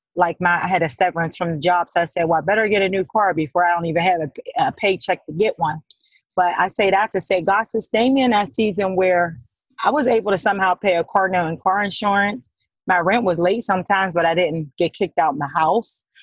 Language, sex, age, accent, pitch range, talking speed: English, female, 30-49, American, 180-245 Hz, 250 wpm